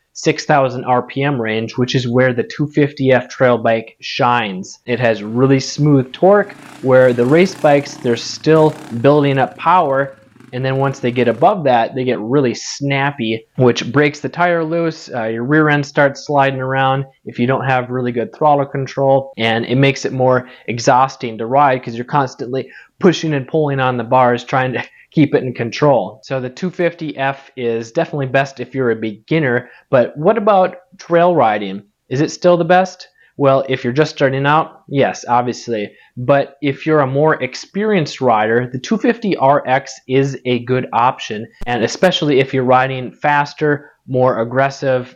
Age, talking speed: 20-39, 170 wpm